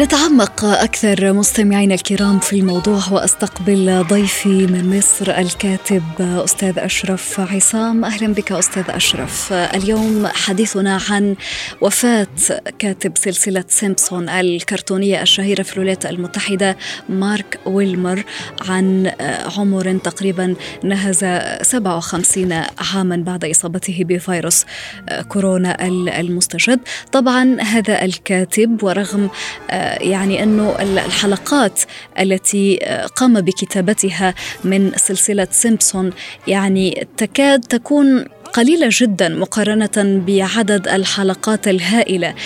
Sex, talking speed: female, 90 wpm